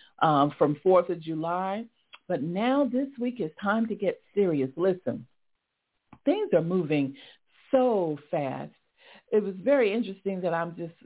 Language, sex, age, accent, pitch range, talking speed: English, female, 50-69, American, 175-265 Hz, 145 wpm